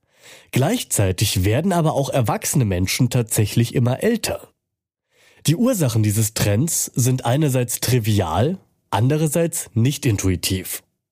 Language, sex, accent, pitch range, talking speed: German, male, German, 110-150 Hz, 105 wpm